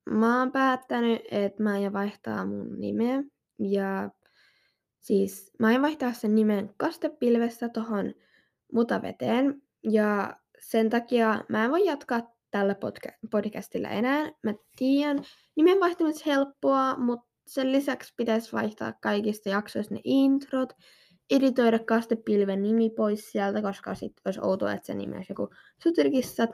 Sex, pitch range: female, 210-265 Hz